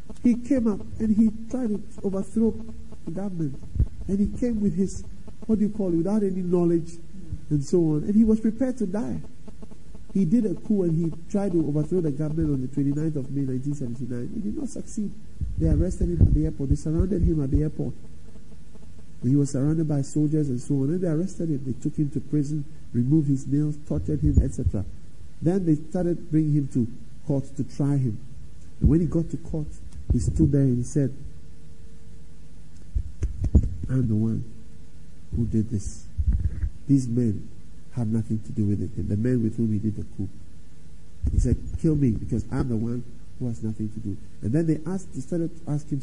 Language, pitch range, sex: English, 110-175 Hz, male